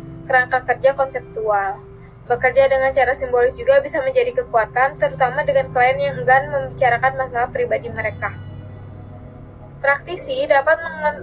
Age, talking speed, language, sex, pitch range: 20-39, 120 wpm, Indonesian, female, 240-280 Hz